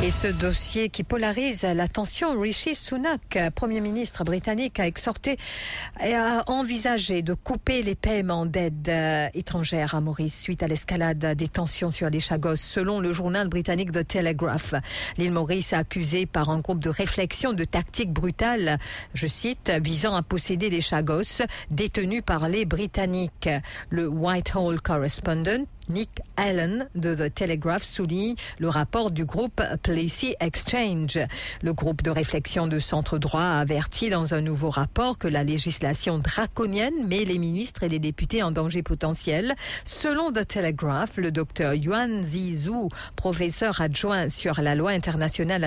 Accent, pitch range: French, 160-215 Hz